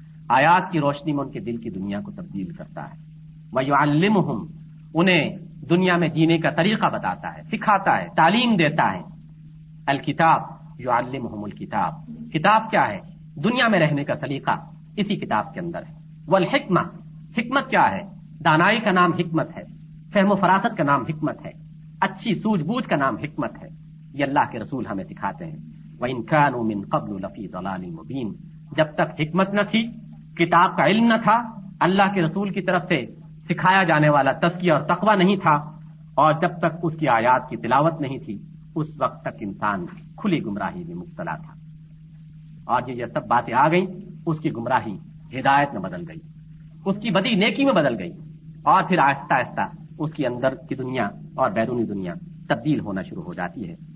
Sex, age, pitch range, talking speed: male, 50-69, 155-185 Hz, 175 wpm